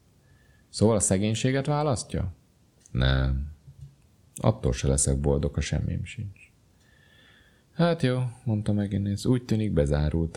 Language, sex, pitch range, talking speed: Hungarian, male, 70-105 Hz, 110 wpm